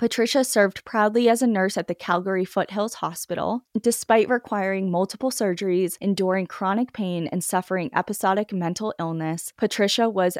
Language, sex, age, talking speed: English, female, 20-39, 145 wpm